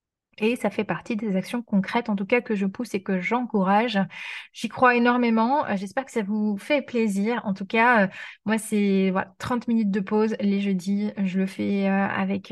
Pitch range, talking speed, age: 195-230 Hz, 195 wpm, 20-39